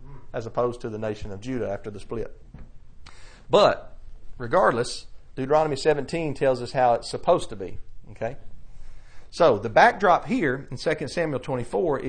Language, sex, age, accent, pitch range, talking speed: English, male, 40-59, American, 125-180 Hz, 150 wpm